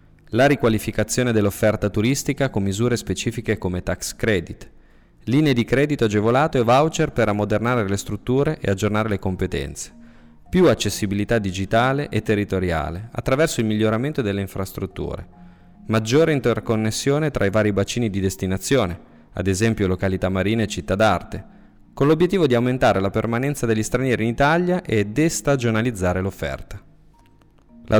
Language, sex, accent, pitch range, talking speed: Italian, male, native, 95-120 Hz, 135 wpm